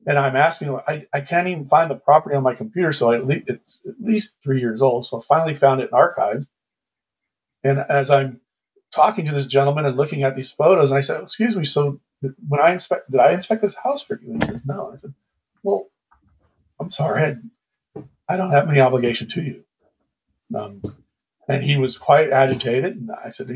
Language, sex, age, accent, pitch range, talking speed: English, male, 40-59, American, 125-150 Hz, 215 wpm